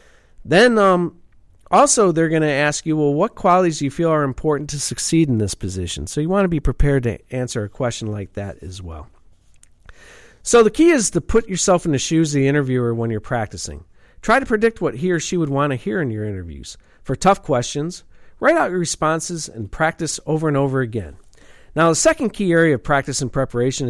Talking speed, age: 220 wpm, 50-69